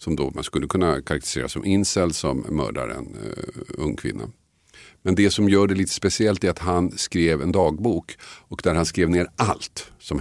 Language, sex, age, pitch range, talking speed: Swedish, male, 50-69, 80-95 Hz, 195 wpm